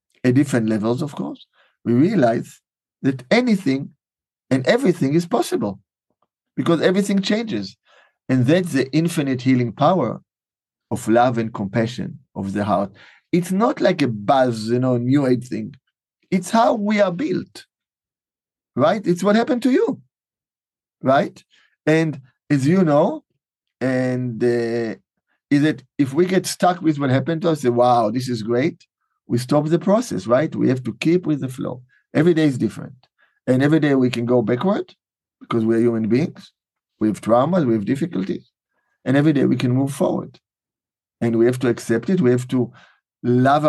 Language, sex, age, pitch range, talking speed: English, male, 50-69, 120-160 Hz, 170 wpm